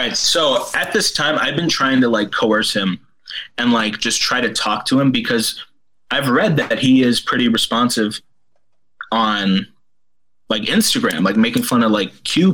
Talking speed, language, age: 175 wpm, English, 20-39